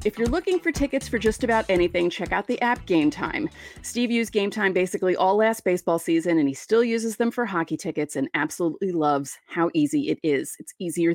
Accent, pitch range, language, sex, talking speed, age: American, 170-235 Hz, English, female, 220 wpm, 30-49